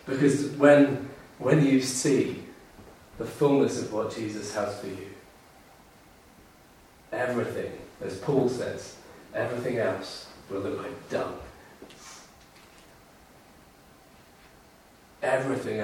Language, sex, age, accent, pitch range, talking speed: English, male, 40-59, British, 105-135 Hz, 90 wpm